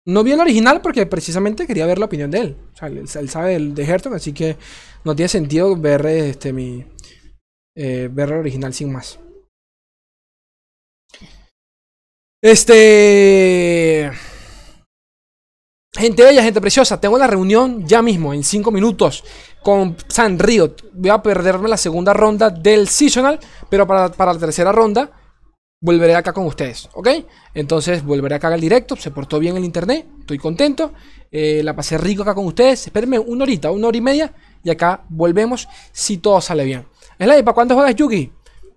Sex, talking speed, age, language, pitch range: male, 165 wpm, 20-39, Spanish, 160-230 Hz